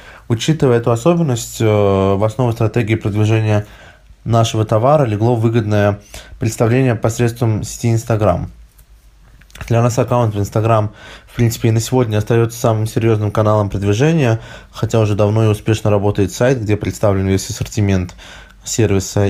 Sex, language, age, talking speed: male, Russian, 20-39, 130 wpm